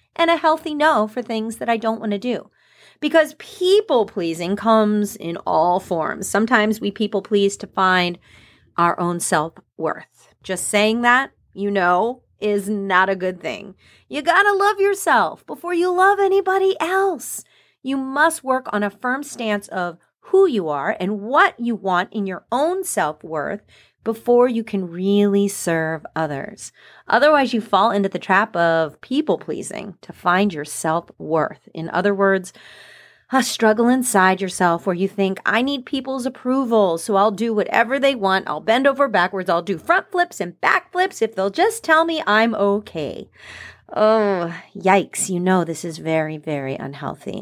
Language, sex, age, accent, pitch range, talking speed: English, female, 40-59, American, 185-270 Hz, 165 wpm